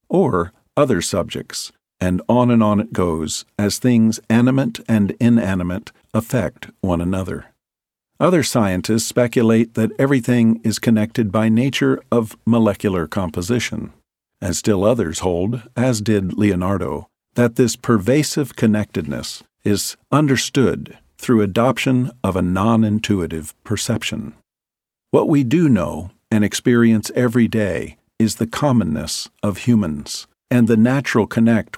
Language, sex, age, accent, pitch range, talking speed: English, male, 50-69, American, 100-120 Hz, 125 wpm